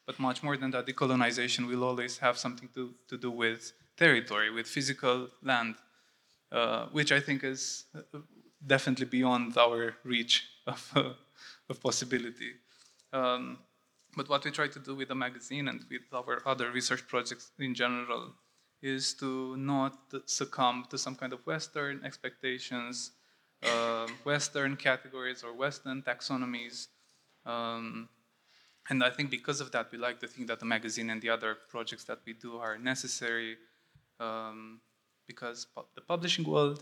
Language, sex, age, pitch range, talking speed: French, male, 20-39, 120-135 Hz, 150 wpm